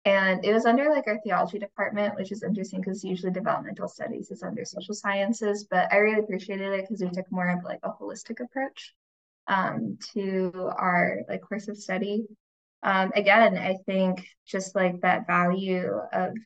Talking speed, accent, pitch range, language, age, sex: 180 wpm, American, 185-210 Hz, English, 10-29, female